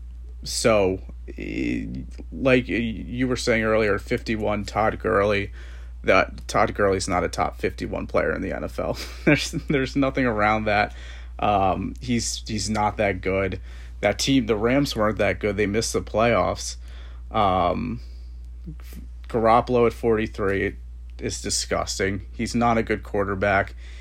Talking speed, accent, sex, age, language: 130 wpm, American, male, 30-49, English